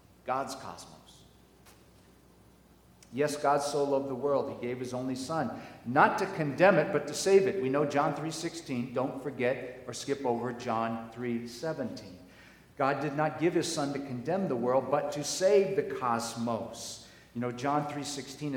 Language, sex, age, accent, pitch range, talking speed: English, male, 50-69, American, 115-145 Hz, 165 wpm